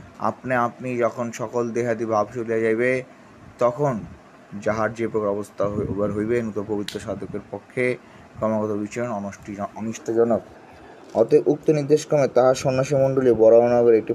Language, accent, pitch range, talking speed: Bengali, native, 105-125 Hz, 115 wpm